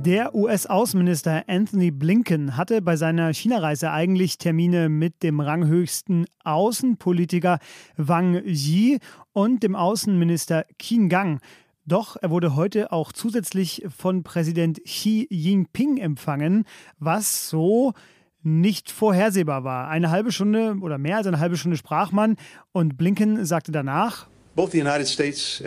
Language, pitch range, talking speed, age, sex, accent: German, 160-200 Hz, 120 wpm, 30-49, male, German